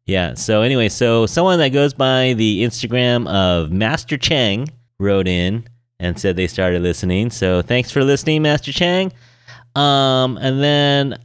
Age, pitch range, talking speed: 30-49, 100-135 Hz, 155 wpm